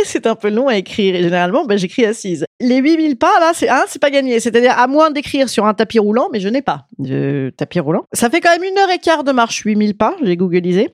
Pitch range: 180-270 Hz